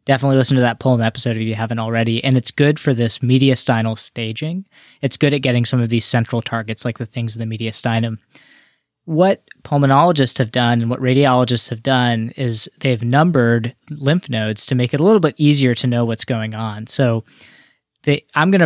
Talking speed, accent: 200 wpm, American